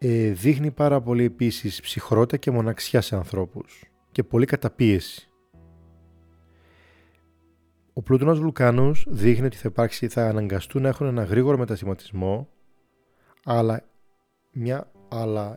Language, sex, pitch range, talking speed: Greek, male, 95-125 Hz, 110 wpm